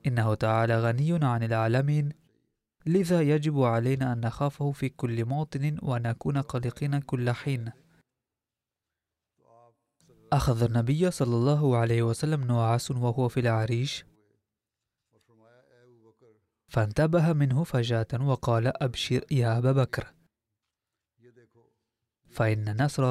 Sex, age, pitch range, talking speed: male, 20-39, 115-145 Hz, 95 wpm